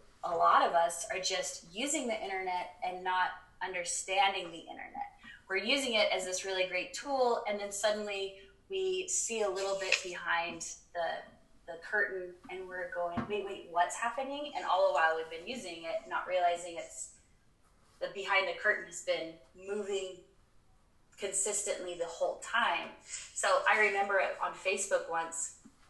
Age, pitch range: 20-39, 180-255 Hz